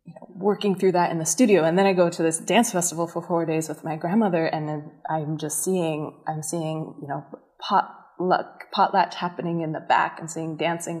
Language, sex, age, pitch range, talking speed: English, female, 20-39, 160-185 Hz, 220 wpm